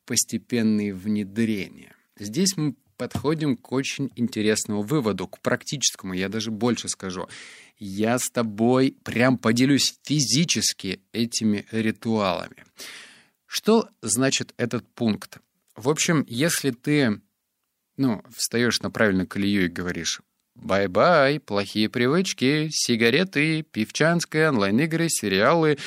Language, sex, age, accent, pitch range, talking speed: Russian, male, 30-49, native, 105-135 Hz, 105 wpm